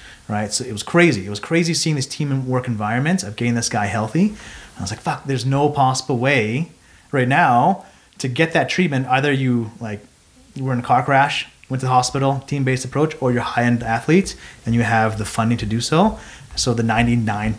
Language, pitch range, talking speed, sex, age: English, 105-130 Hz, 220 wpm, male, 30-49